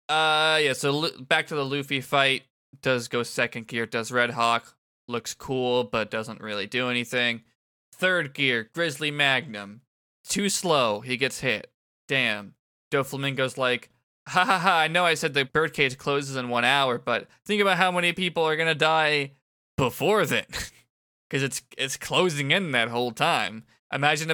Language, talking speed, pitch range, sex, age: English, 165 wpm, 120-160 Hz, male, 20-39